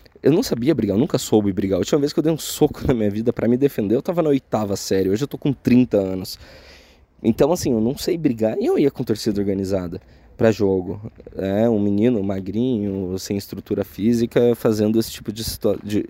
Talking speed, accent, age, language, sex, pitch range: 225 wpm, Brazilian, 20-39, Portuguese, male, 105-150 Hz